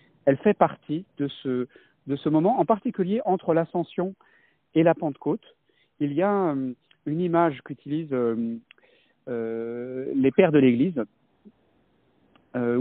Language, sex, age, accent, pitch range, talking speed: French, male, 50-69, French, 135-180 Hz, 130 wpm